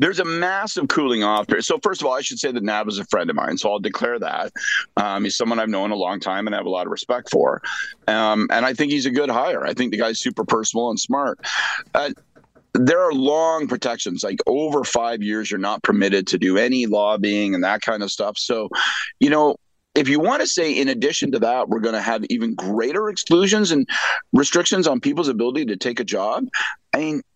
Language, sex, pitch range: English, male, 115-180 Hz